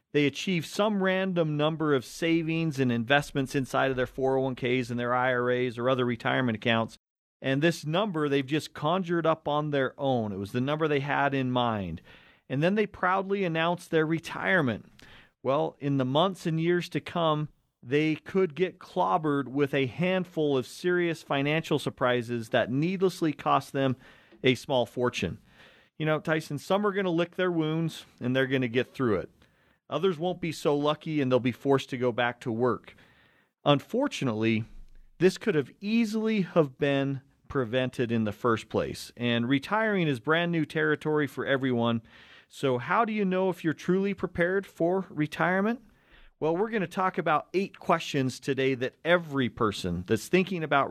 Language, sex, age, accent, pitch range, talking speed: English, male, 40-59, American, 130-175 Hz, 175 wpm